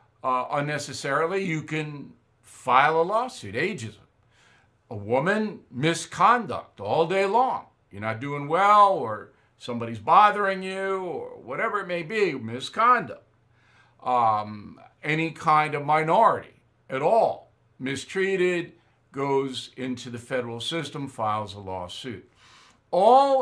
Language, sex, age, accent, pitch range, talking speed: English, male, 60-79, American, 115-155 Hz, 115 wpm